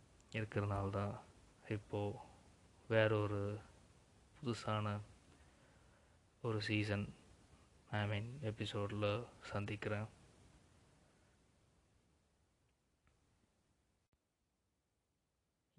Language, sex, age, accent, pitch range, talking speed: Tamil, male, 20-39, native, 100-120 Hz, 40 wpm